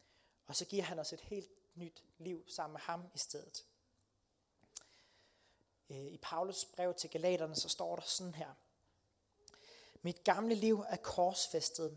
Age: 30-49